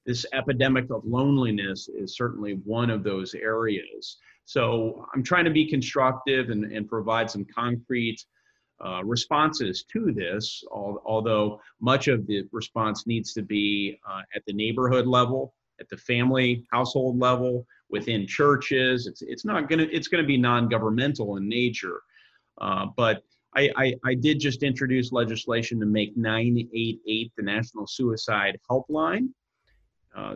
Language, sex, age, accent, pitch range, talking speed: English, male, 40-59, American, 105-125 Hz, 145 wpm